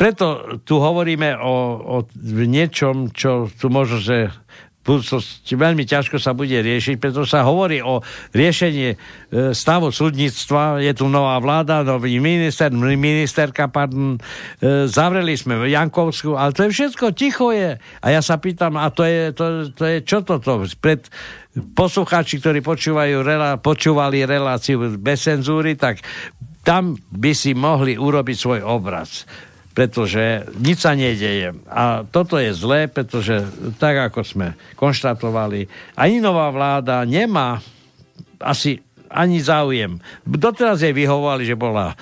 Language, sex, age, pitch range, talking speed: Slovak, male, 60-79, 120-150 Hz, 135 wpm